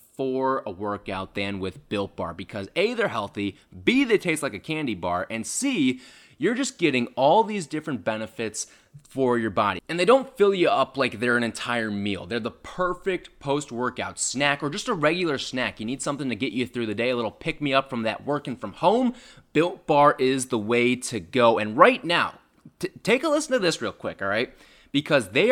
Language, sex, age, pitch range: English, male, 20-39, 110-165 Hz